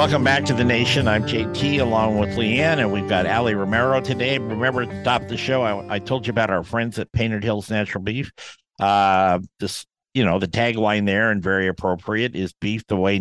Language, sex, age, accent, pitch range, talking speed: English, male, 60-79, American, 95-125 Hz, 215 wpm